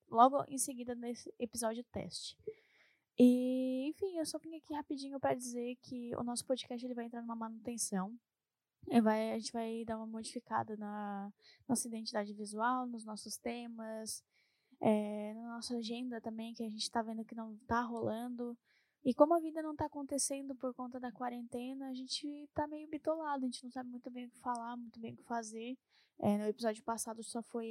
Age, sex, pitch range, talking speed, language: 10-29, female, 225-260 Hz, 195 wpm, Portuguese